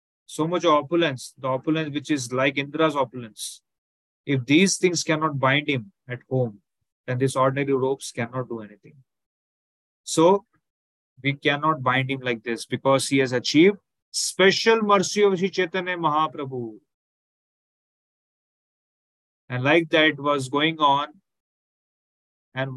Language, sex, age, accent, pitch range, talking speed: English, male, 30-49, Indian, 125-155 Hz, 130 wpm